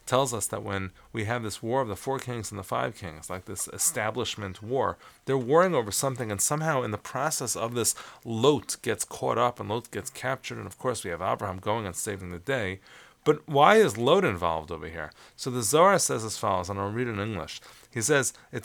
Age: 30-49